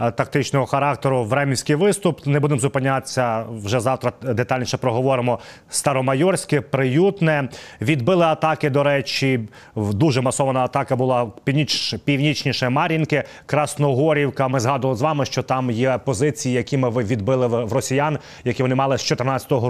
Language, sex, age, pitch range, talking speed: Ukrainian, male, 30-49, 130-155 Hz, 130 wpm